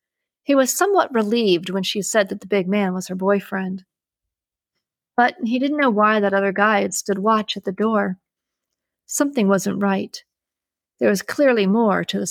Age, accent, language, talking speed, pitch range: 40-59, American, English, 180 wpm, 190-235 Hz